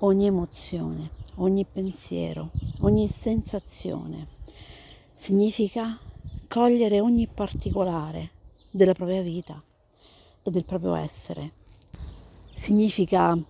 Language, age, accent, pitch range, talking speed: Italian, 50-69, native, 150-195 Hz, 80 wpm